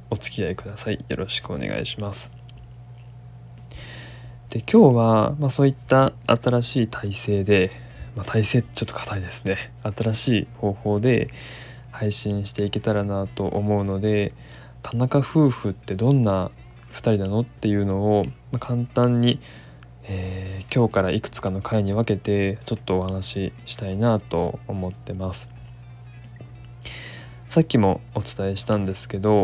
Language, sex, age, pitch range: Japanese, male, 20-39, 100-120 Hz